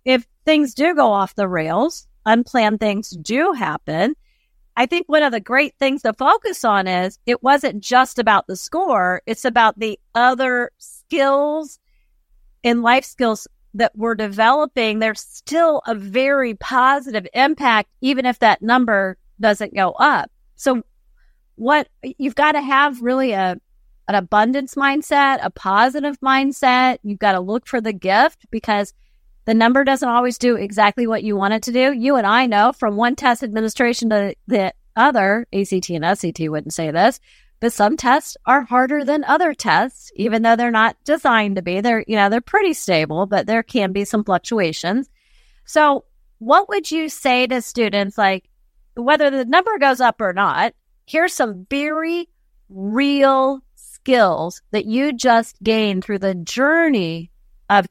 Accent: American